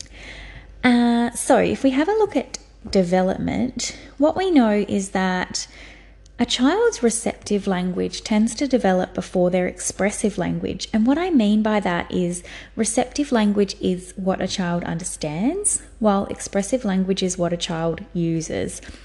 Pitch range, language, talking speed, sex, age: 185-240 Hz, English, 150 wpm, female, 20-39